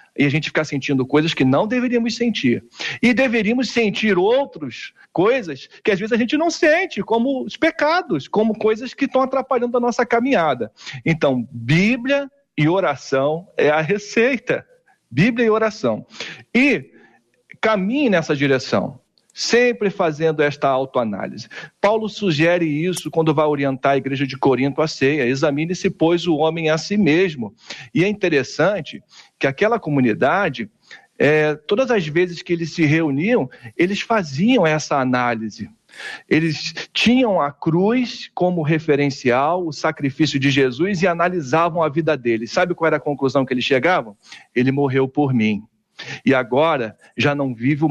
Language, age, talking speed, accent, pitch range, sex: Portuguese, 50-69, 150 wpm, Brazilian, 140-200 Hz, male